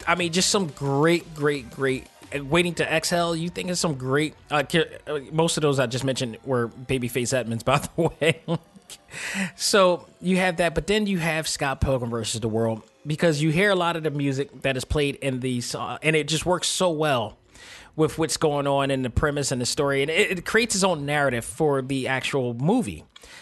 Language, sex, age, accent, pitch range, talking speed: English, male, 20-39, American, 130-160 Hz, 210 wpm